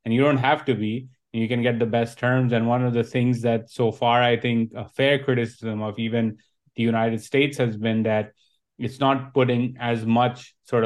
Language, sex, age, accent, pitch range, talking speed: English, male, 30-49, Indian, 110-125 Hz, 215 wpm